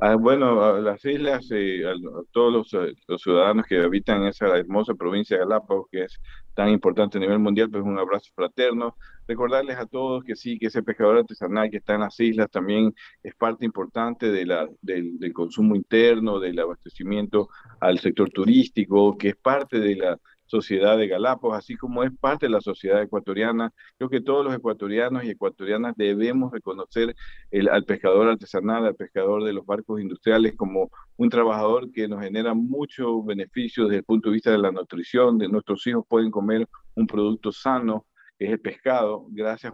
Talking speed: 180 wpm